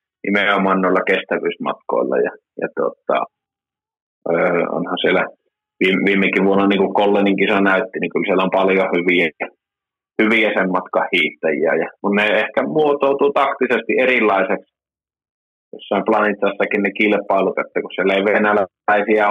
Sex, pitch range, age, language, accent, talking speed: male, 100-115 Hz, 20-39, Finnish, native, 125 wpm